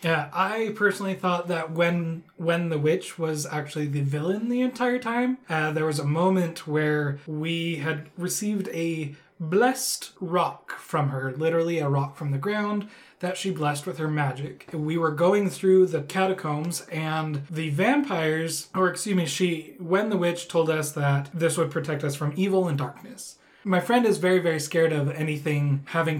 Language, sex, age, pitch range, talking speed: English, male, 20-39, 150-180 Hz, 180 wpm